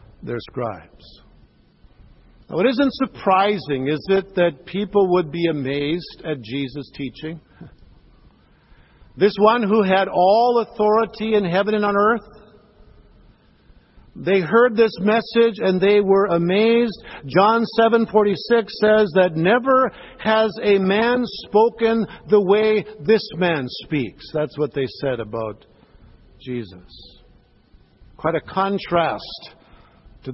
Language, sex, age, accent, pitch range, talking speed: English, male, 50-69, American, 145-220 Hz, 120 wpm